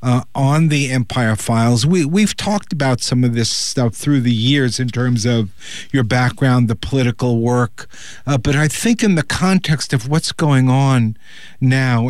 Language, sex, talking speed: English, male, 180 wpm